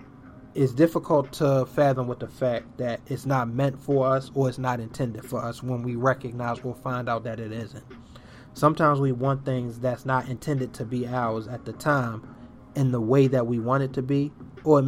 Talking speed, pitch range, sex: 210 wpm, 120-135 Hz, male